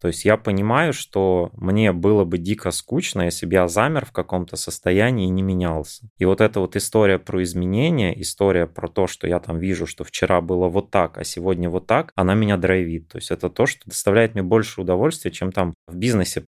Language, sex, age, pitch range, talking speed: Russian, male, 20-39, 85-100 Hz, 215 wpm